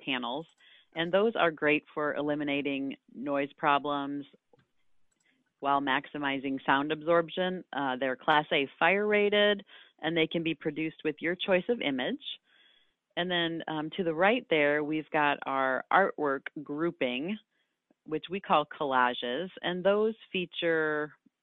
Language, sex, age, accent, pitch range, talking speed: English, female, 40-59, American, 135-170 Hz, 135 wpm